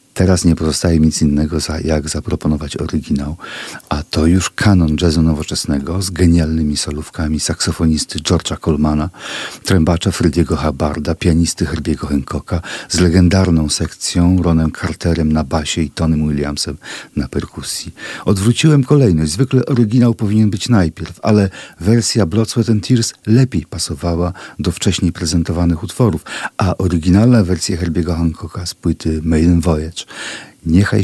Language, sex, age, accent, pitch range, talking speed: Polish, male, 40-59, native, 80-95 Hz, 130 wpm